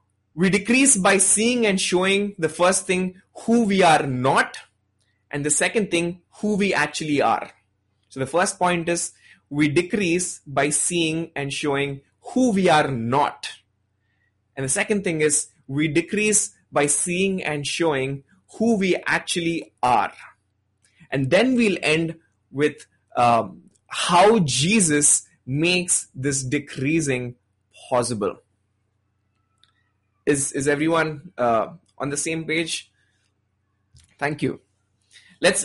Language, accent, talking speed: English, Indian, 125 wpm